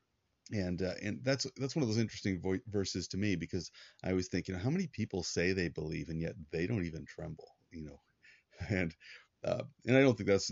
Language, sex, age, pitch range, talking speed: English, male, 30-49, 85-105 Hz, 210 wpm